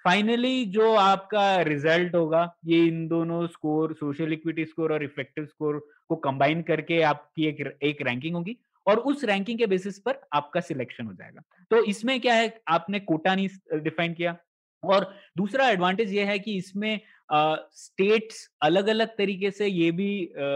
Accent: native